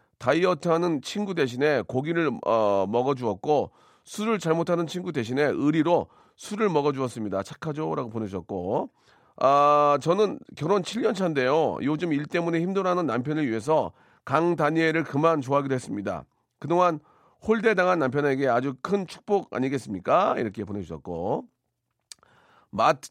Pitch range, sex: 130-180 Hz, male